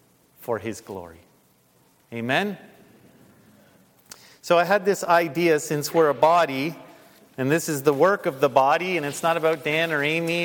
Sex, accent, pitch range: male, American, 165-225 Hz